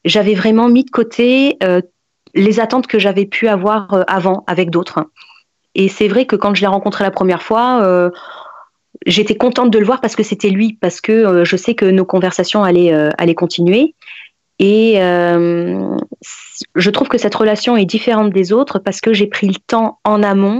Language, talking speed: French, 200 wpm